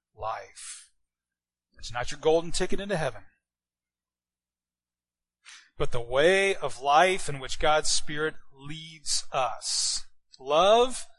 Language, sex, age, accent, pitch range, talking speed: English, male, 30-49, American, 105-155 Hz, 105 wpm